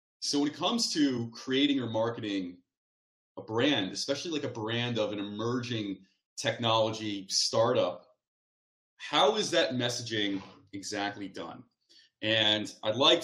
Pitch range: 110-140 Hz